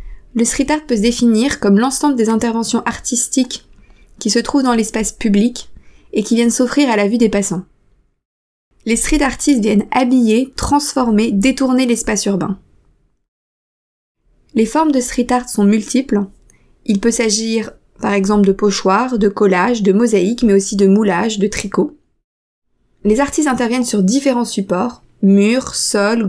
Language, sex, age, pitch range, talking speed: French, female, 20-39, 205-245 Hz, 155 wpm